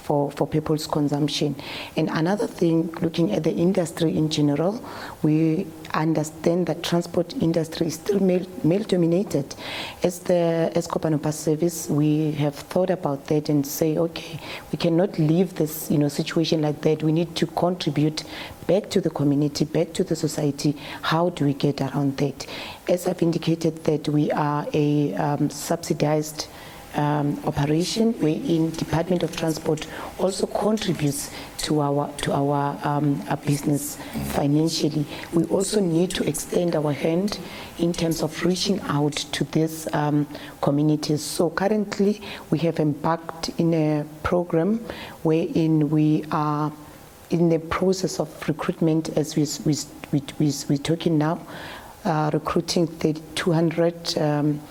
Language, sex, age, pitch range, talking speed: English, female, 30-49, 150-170 Hz, 145 wpm